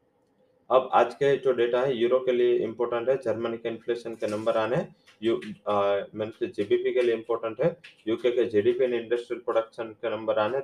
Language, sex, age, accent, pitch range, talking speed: English, male, 20-39, Indian, 110-130 Hz, 180 wpm